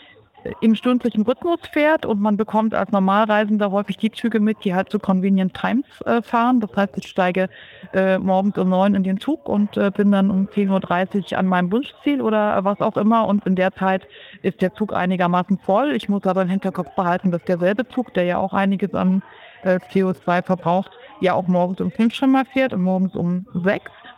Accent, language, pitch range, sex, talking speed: German, German, 185-215 Hz, female, 205 wpm